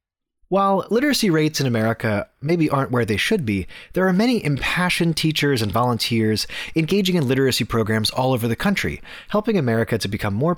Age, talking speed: 30-49, 175 wpm